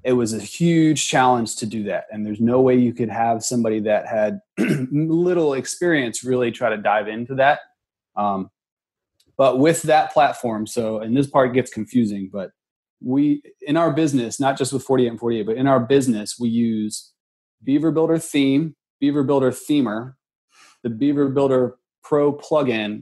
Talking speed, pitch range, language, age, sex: 170 wpm, 110-135 Hz, English, 30-49, male